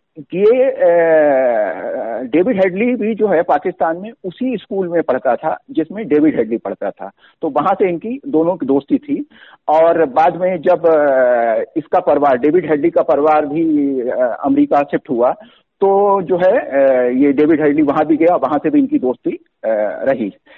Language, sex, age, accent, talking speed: Hindi, male, 50-69, native, 160 wpm